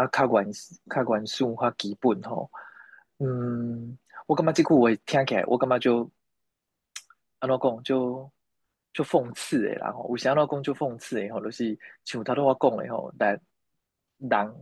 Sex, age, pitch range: male, 20-39, 110-130 Hz